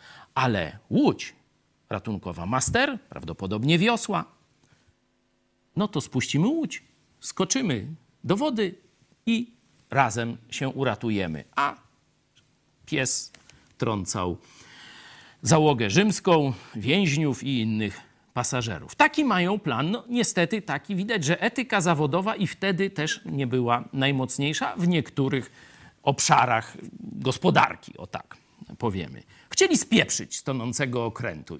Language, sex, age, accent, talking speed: Polish, male, 50-69, native, 100 wpm